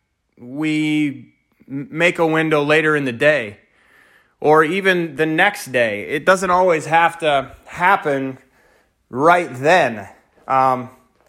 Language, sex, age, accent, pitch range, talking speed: English, male, 30-49, American, 135-180 Hz, 115 wpm